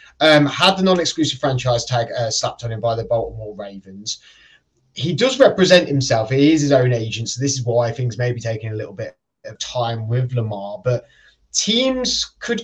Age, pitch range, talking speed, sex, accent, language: 20-39, 125-165 Hz, 195 wpm, male, British, English